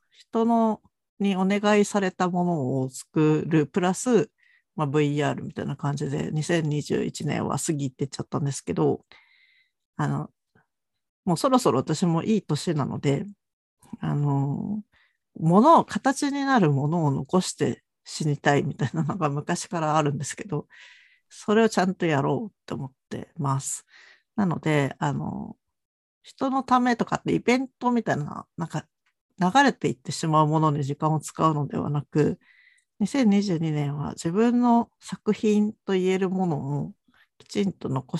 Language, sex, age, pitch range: Japanese, female, 50-69, 150-220 Hz